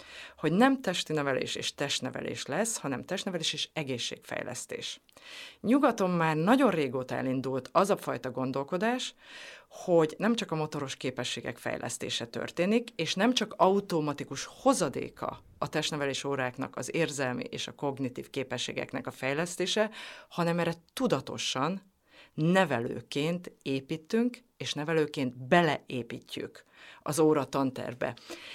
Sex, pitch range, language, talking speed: female, 135-200 Hz, Hungarian, 115 wpm